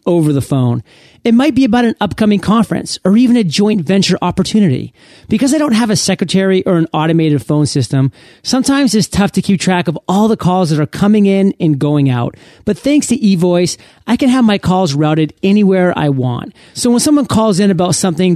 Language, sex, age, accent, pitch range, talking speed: English, male, 40-59, American, 155-210 Hz, 210 wpm